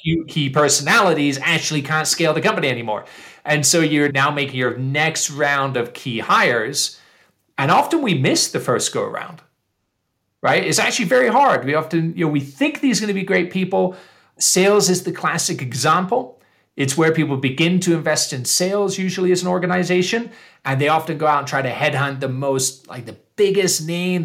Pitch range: 145-195 Hz